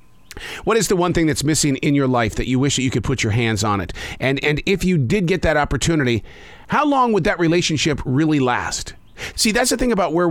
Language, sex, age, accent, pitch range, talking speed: English, male, 40-59, American, 130-185 Hz, 245 wpm